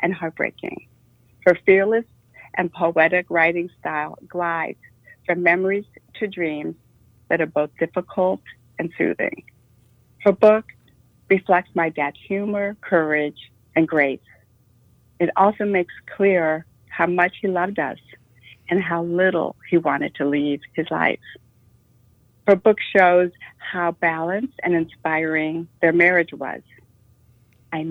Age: 60-79